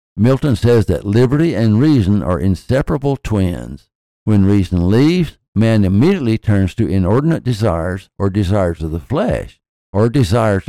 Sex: male